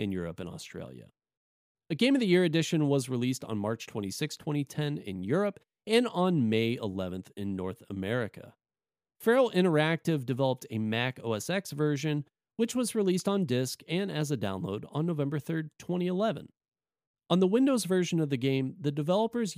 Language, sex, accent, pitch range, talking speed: English, male, American, 125-185 Hz, 170 wpm